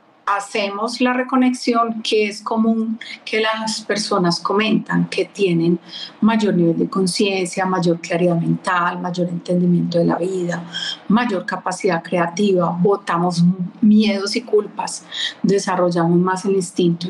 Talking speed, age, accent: 125 wpm, 40-59, Colombian